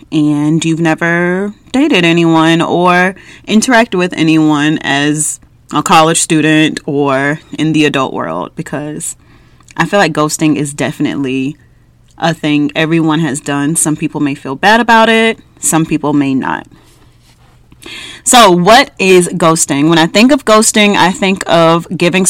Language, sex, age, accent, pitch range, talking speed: English, female, 30-49, American, 155-190 Hz, 145 wpm